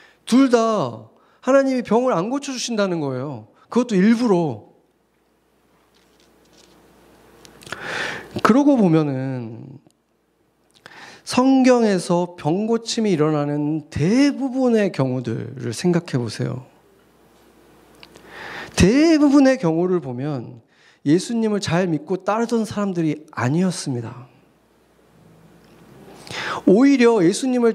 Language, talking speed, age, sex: English, 65 wpm, 40-59, male